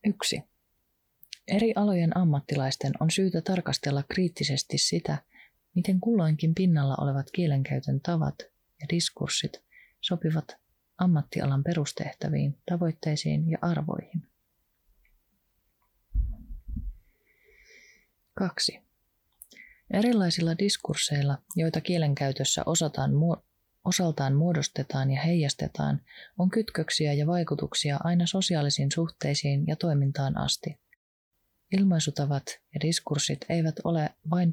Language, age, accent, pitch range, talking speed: Finnish, 30-49, native, 145-180 Hz, 85 wpm